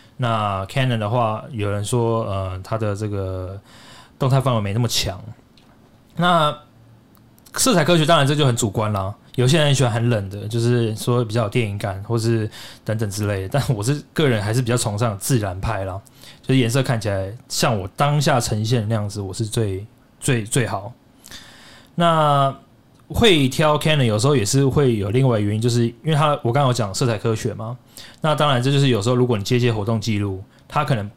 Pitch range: 105-130 Hz